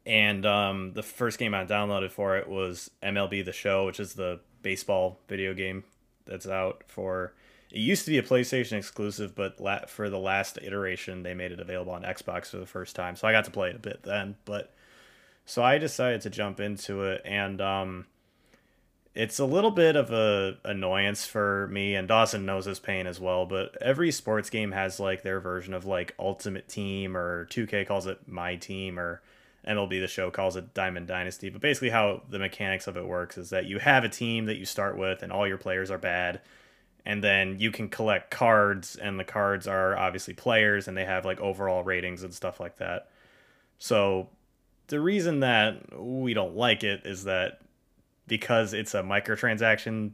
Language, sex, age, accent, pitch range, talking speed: English, male, 20-39, American, 95-105 Hz, 200 wpm